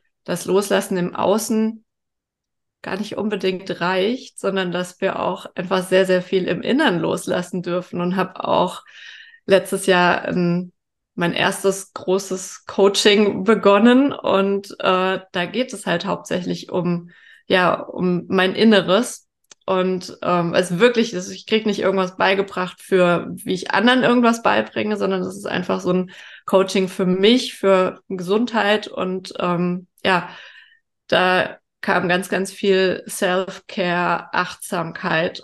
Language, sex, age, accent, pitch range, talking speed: German, female, 20-39, German, 180-205 Hz, 140 wpm